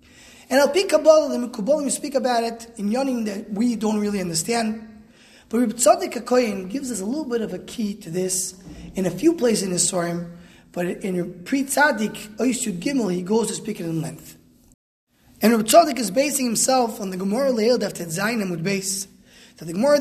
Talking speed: 185 wpm